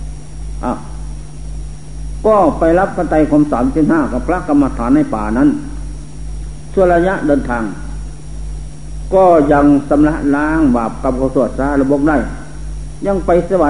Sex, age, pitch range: male, 60-79, 120-160 Hz